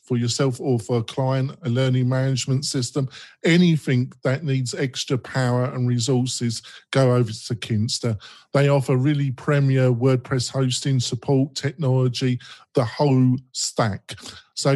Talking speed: 135 wpm